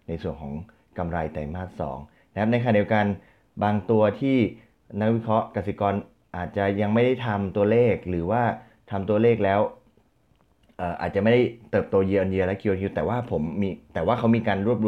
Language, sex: Thai, male